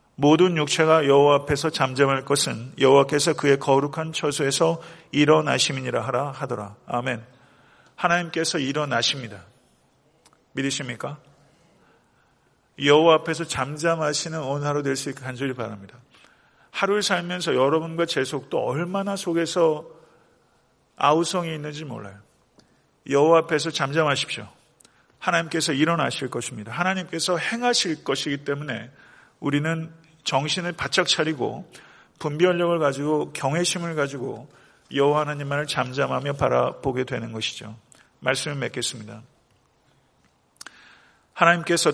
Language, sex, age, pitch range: Korean, male, 40-59, 130-160 Hz